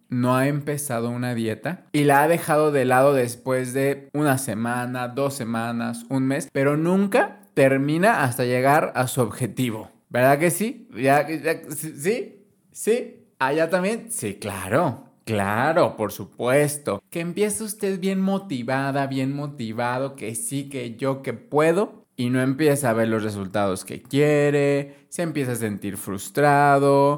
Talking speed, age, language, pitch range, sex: 145 wpm, 20-39, Spanish, 115-155 Hz, male